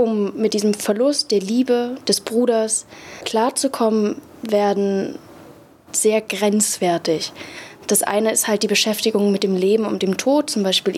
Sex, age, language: female, 20-39, German